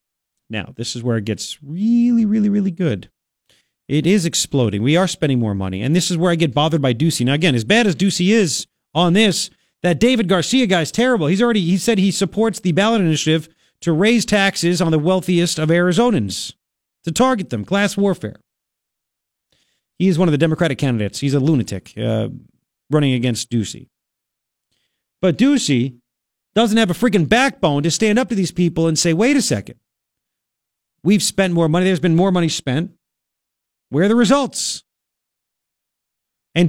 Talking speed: 175 wpm